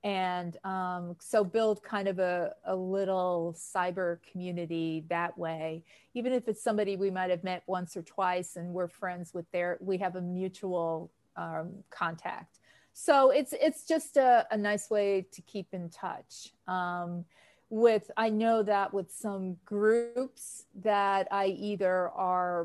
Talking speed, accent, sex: 155 wpm, American, female